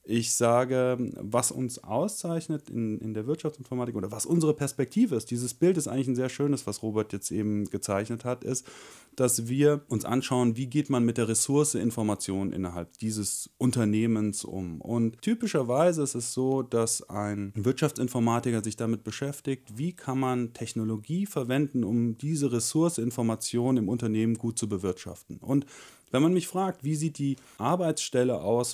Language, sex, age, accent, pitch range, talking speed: German, male, 30-49, German, 110-145 Hz, 155 wpm